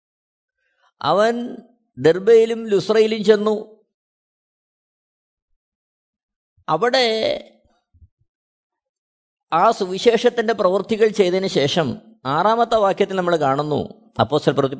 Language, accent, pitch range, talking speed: Malayalam, native, 165-225 Hz, 65 wpm